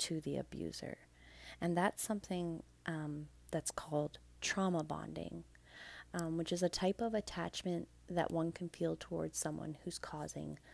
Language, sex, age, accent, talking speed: English, female, 30-49, American, 145 wpm